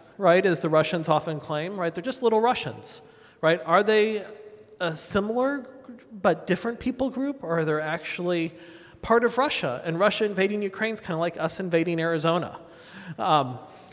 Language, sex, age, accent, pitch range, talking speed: English, male, 40-59, American, 145-190 Hz, 170 wpm